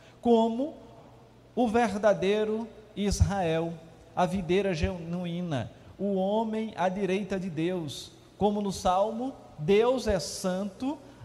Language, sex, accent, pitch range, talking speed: Portuguese, male, Brazilian, 160-210 Hz, 100 wpm